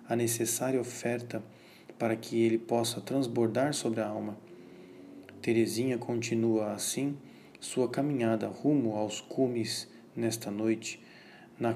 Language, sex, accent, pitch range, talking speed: Portuguese, male, Brazilian, 110-125 Hz, 110 wpm